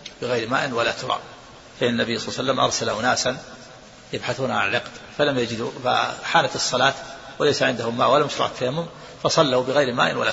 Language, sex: Arabic, male